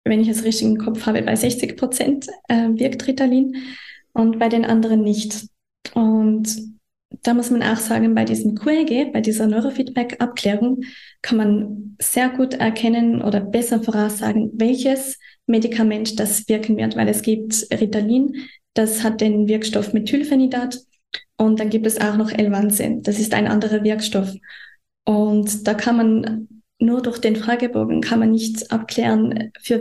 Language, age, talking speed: German, 20-39, 155 wpm